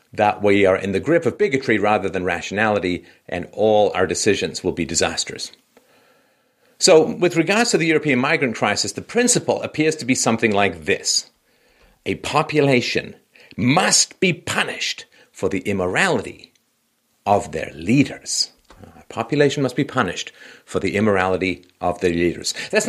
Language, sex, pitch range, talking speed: English, male, 110-160 Hz, 150 wpm